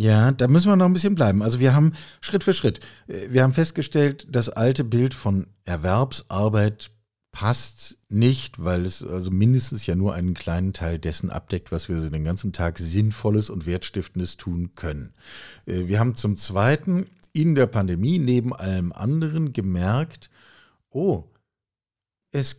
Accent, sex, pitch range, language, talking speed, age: German, male, 100-135 Hz, German, 155 wpm, 50-69